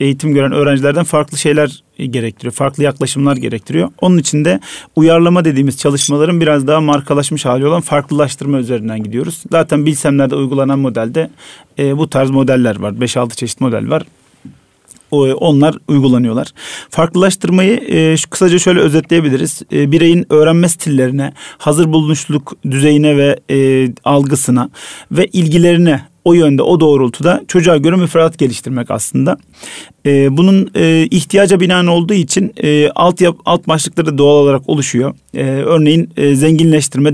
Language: Turkish